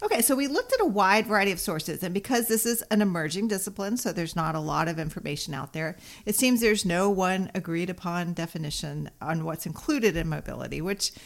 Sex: female